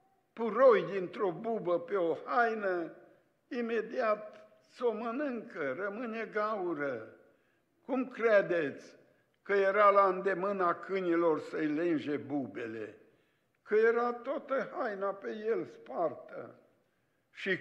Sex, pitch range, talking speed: male, 190-250 Hz, 100 wpm